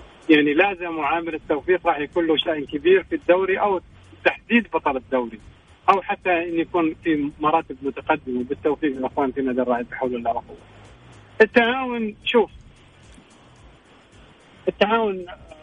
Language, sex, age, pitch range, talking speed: Arabic, male, 40-59, 140-185 Hz, 125 wpm